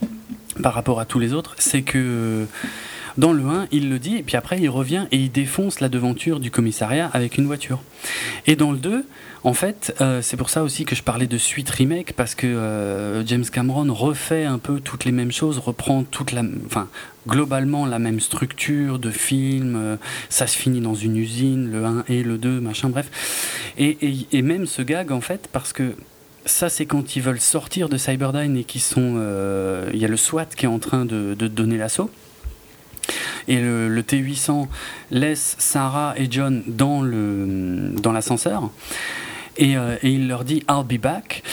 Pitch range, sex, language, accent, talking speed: 120-150 Hz, male, French, French, 195 wpm